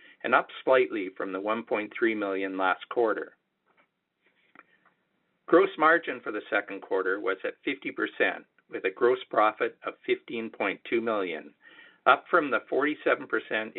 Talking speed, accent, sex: 125 wpm, American, male